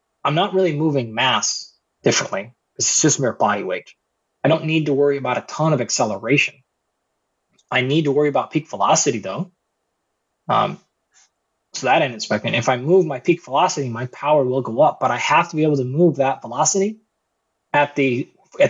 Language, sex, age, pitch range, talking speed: English, male, 20-39, 125-160 Hz, 195 wpm